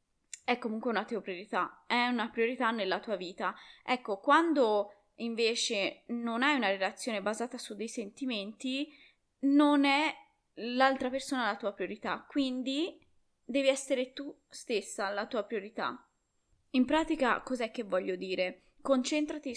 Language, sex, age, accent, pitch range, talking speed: Italian, female, 20-39, native, 215-280 Hz, 135 wpm